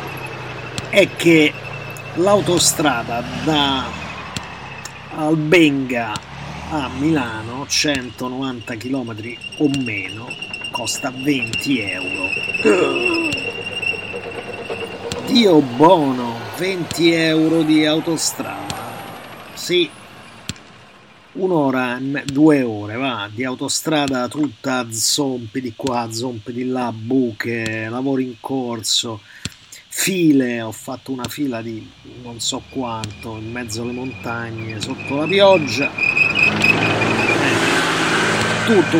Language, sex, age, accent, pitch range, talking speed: Italian, male, 30-49, native, 115-145 Hz, 90 wpm